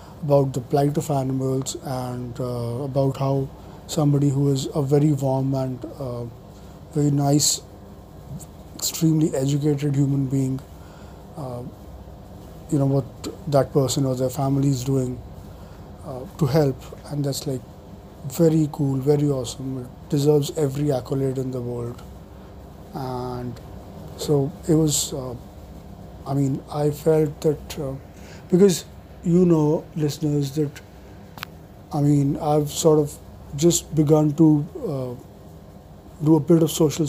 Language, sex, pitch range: English, male, 125-150 Hz